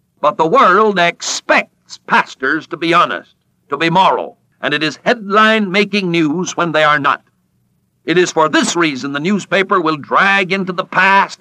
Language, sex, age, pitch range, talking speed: English, male, 60-79, 160-210 Hz, 170 wpm